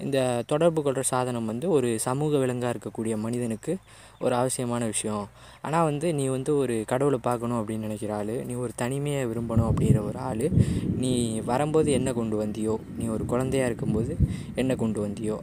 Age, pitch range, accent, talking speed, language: 20-39, 110-135 Hz, native, 160 wpm, Tamil